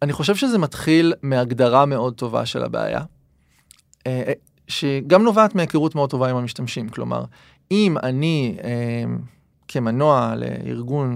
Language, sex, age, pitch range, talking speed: Hebrew, male, 30-49, 125-160 Hz, 115 wpm